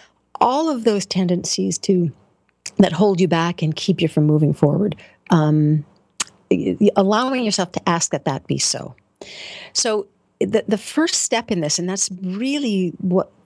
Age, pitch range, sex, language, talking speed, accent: 50-69, 175-215 Hz, female, English, 155 wpm, American